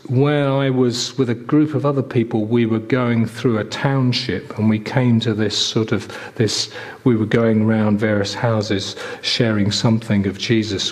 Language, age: English, 40-59